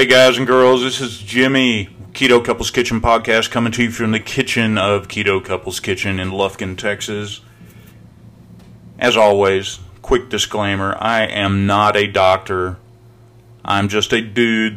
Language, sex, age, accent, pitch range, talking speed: English, male, 30-49, American, 100-115 Hz, 150 wpm